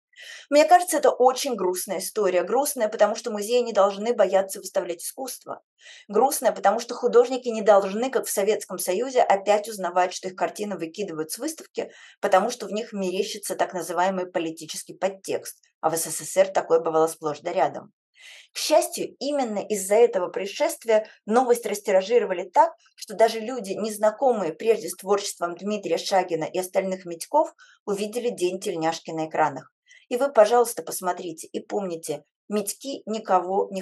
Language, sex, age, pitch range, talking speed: Russian, female, 20-39, 180-240 Hz, 150 wpm